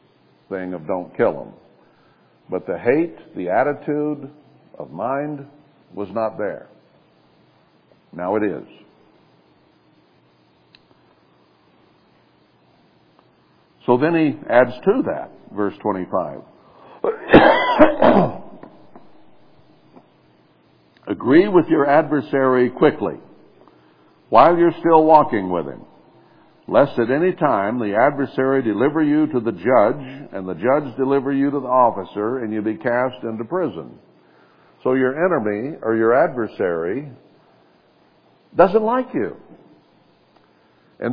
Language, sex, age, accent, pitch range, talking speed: English, male, 60-79, American, 125-175 Hz, 105 wpm